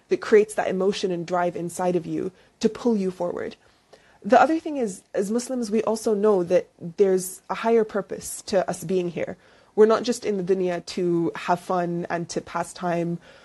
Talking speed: 195 wpm